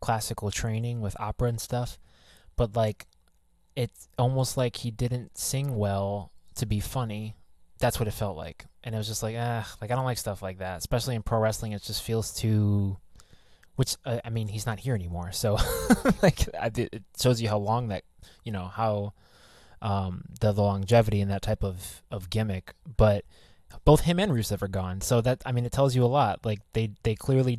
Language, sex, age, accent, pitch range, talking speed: English, male, 20-39, American, 100-115 Hz, 200 wpm